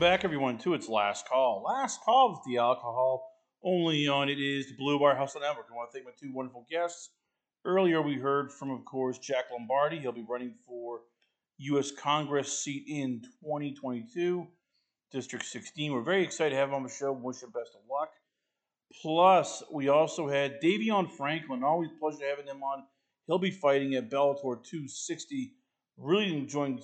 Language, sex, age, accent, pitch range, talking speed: English, male, 40-59, American, 125-160 Hz, 180 wpm